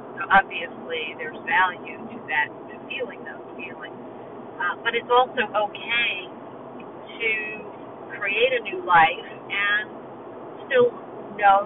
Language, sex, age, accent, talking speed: English, female, 50-69, American, 120 wpm